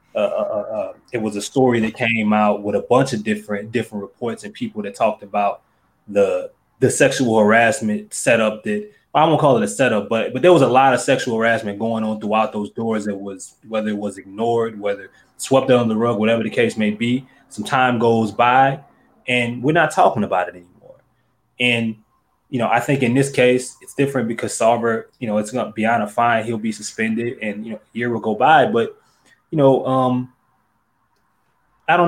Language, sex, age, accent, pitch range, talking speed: English, male, 20-39, American, 110-130 Hz, 210 wpm